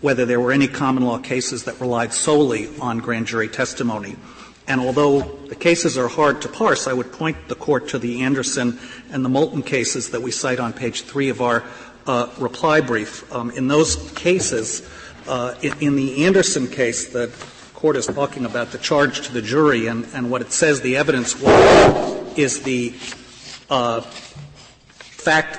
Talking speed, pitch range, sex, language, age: 180 wpm, 120-145 Hz, male, English, 50-69